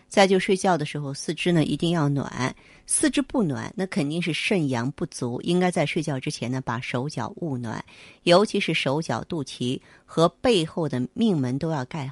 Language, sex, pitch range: Chinese, female, 135-175 Hz